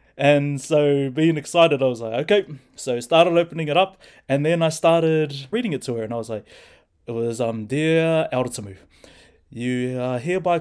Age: 20-39